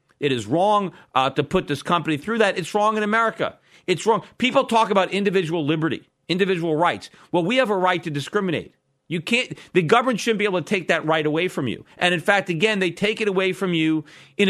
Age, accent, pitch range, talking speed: 40-59, American, 150-200 Hz, 230 wpm